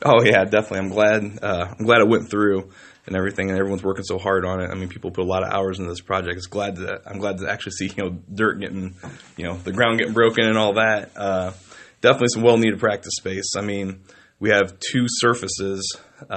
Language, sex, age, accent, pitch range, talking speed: English, male, 20-39, American, 95-105 Hz, 240 wpm